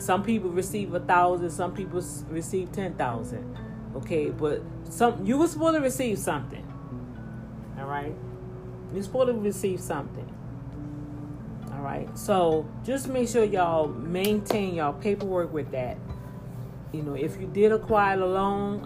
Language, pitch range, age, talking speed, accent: English, 140-185 Hz, 40-59, 145 wpm, American